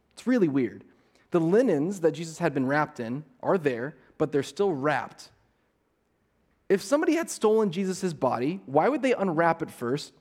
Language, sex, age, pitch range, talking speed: English, male, 30-49, 140-215 Hz, 170 wpm